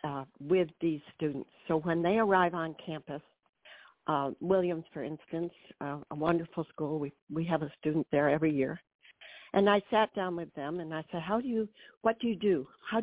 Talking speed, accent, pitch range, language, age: 200 wpm, American, 155-190 Hz, English, 60-79